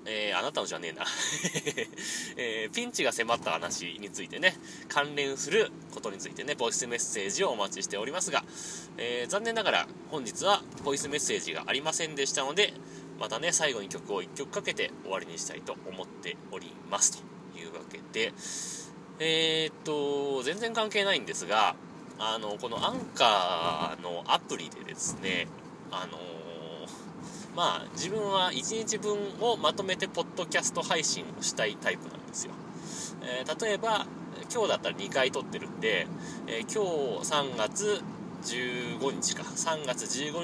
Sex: male